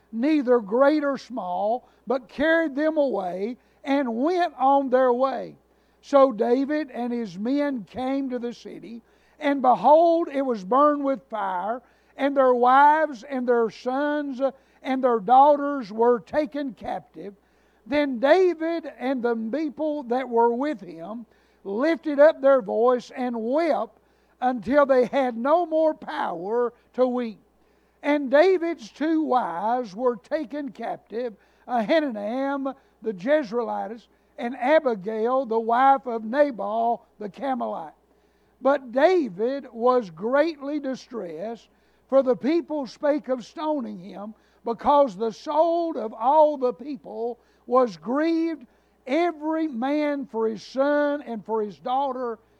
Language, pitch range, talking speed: English, 235-290 Hz, 130 wpm